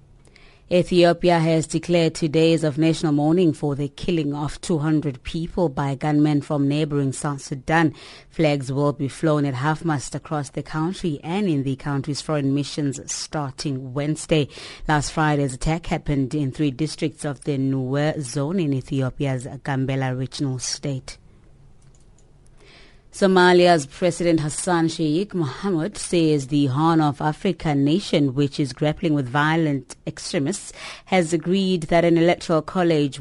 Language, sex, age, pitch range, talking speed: English, female, 30-49, 140-165 Hz, 140 wpm